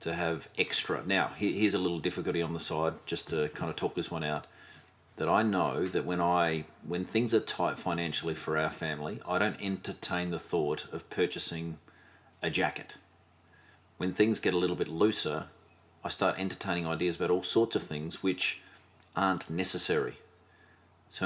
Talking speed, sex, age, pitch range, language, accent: 175 wpm, male, 30-49, 85-95 Hz, English, Australian